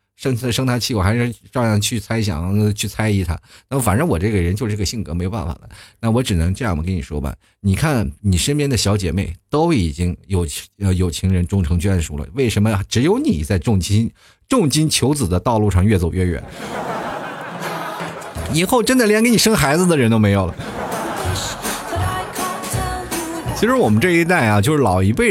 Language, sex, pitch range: Chinese, male, 95-145 Hz